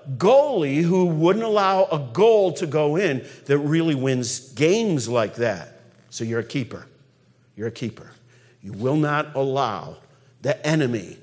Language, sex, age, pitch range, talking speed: English, male, 50-69, 135-175 Hz, 150 wpm